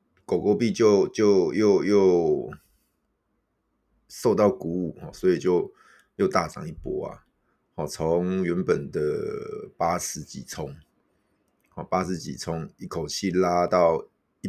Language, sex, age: Chinese, male, 30-49